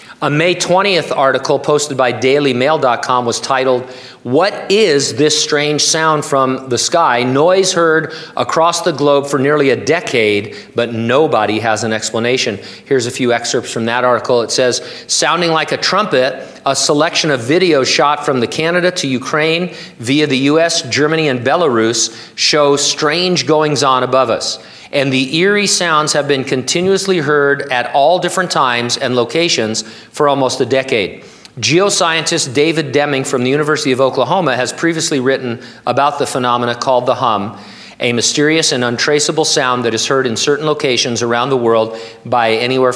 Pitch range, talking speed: 120-155 Hz, 165 wpm